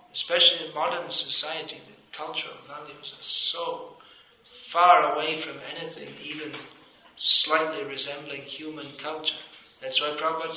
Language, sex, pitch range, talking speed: English, male, 140-170 Hz, 120 wpm